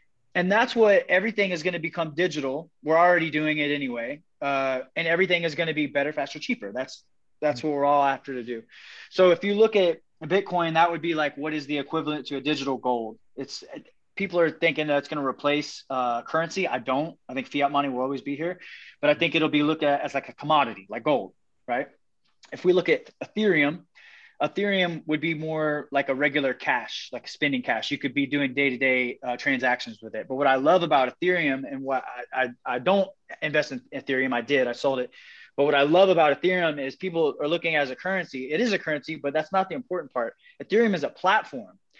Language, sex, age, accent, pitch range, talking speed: English, male, 20-39, American, 140-180 Hz, 225 wpm